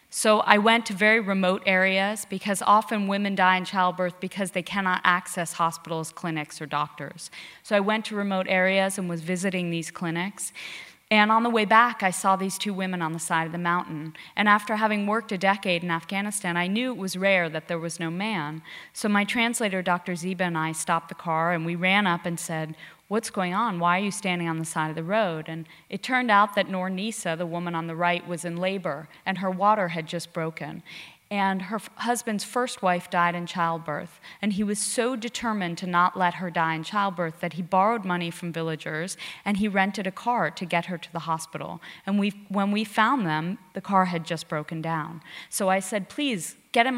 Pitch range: 170-205 Hz